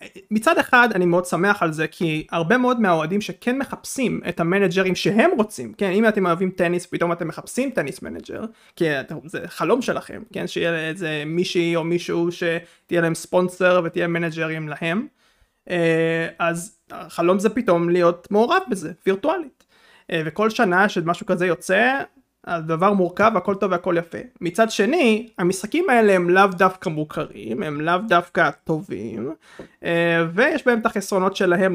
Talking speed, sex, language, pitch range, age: 150 wpm, male, Hebrew, 170-205 Hz, 20-39